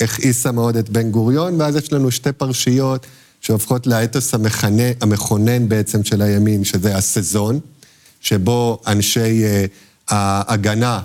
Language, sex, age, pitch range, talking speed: Hebrew, male, 50-69, 110-140 Hz, 125 wpm